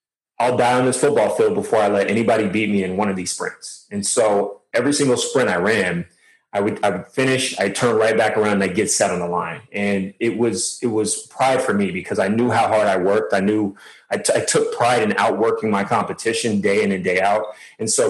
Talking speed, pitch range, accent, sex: 240 wpm, 100-125 Hz, American, male